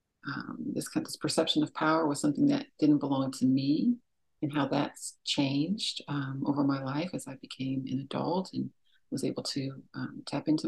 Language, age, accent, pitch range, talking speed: English, 50-69, American, 140-215 Hz, 190 wpm